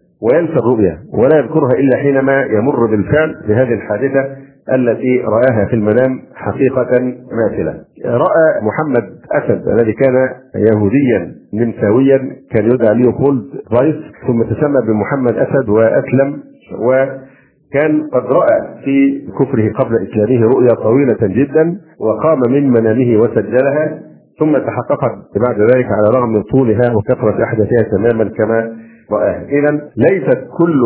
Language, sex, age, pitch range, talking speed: Arabic, male, 50-69, 110-135 Hz, 115 wpm